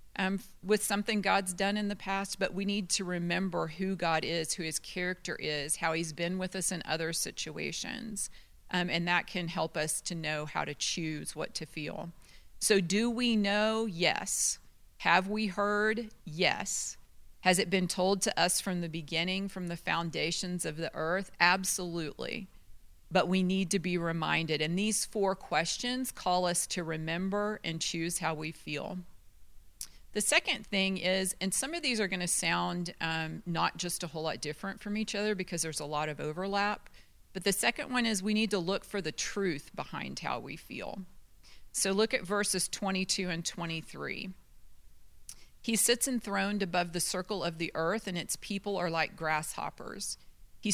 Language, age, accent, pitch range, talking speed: English, 40-59, American, 165-200 Hz, 180 wpm